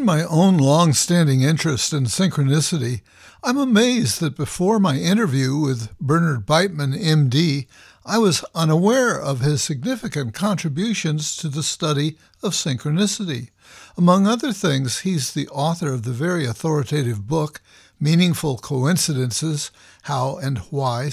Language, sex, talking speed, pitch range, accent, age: English, male, 125 wpm, 135-170 Hz, American, 60-79